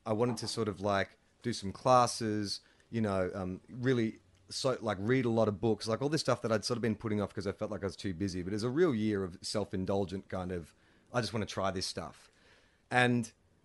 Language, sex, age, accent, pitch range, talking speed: English, male, 30-49, Australian, 100-130 Hz, 250 wpm